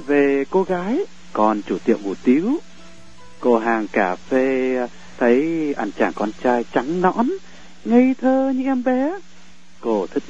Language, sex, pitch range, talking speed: Vietnamese, male, 110-175 Hz, 150 wpm